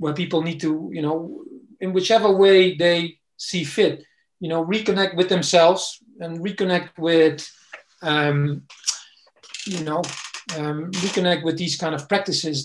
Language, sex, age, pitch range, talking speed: English, male, 40-59, 155-185 Hz, 140 wpm